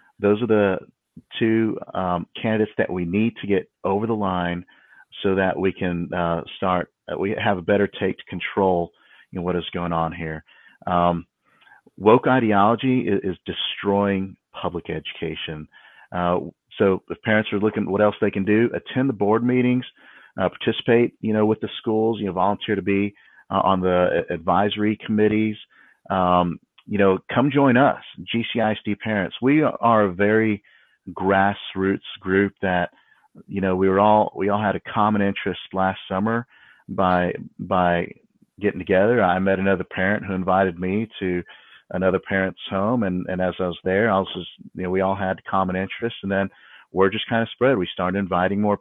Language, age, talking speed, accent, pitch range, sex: English, 40-59, 180 wpm, American, 90-110 Hz, male